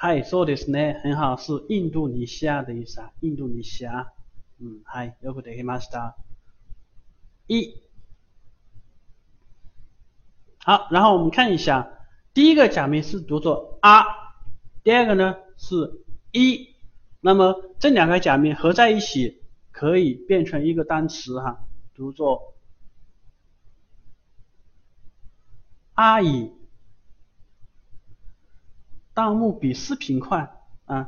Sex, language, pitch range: male, Chinese, 105-165 Hz